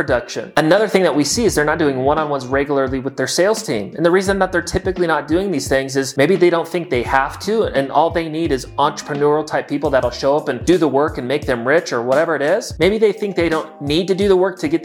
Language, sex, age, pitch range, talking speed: English, male, 30-49, 135-170 Hz, 280 wpm